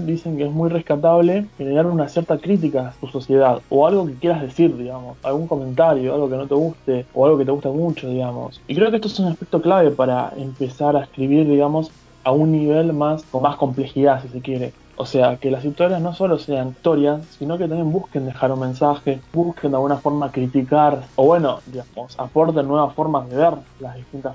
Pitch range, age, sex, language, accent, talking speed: 130-155 Hz, 20-39, male, Spanish, Argentinian, 210 wpm